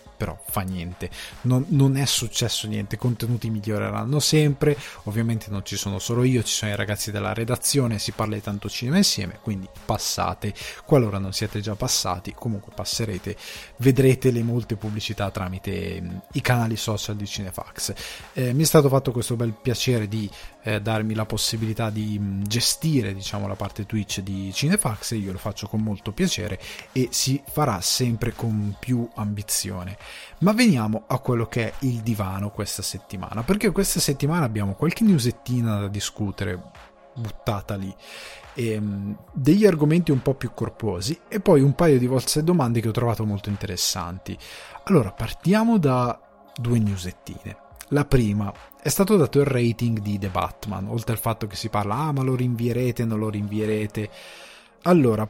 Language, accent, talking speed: Italian, native, 165 wpm